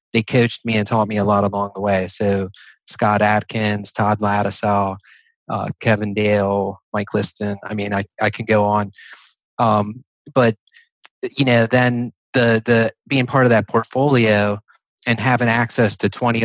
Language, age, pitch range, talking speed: English, 30-49, 105-115 Hz, 160 wpm